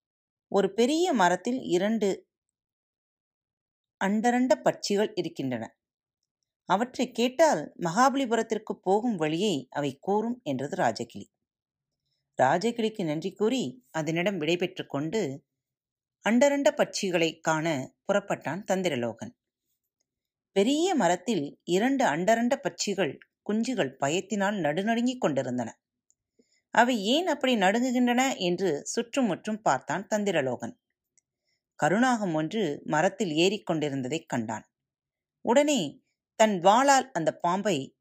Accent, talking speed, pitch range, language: native, 85 wpm, 160-235 Hz, Tamil